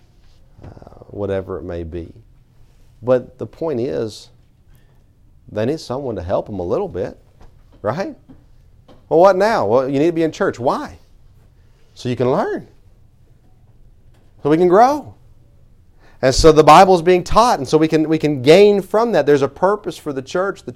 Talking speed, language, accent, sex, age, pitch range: 175 wpm, English, American, male, 40-59, 105-130 Hz